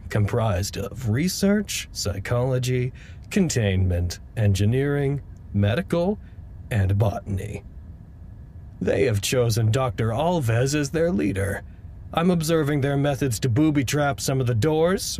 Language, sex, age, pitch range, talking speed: English, male, 40-59, 100-135 Hz, 105 wpm